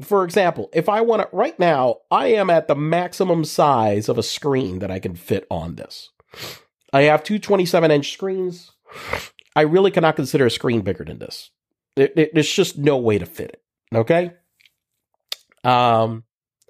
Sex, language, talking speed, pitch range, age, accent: male, English, 175 wpm, 135-185 Hz, 40-59, American